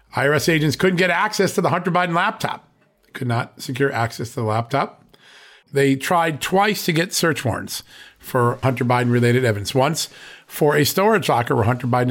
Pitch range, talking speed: 115-160 Hz, 185 wpm